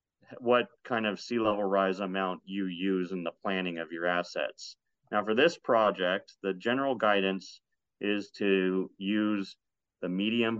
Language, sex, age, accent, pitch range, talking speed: English, male, 40-59, American, 95-110 Hz, 155 wpm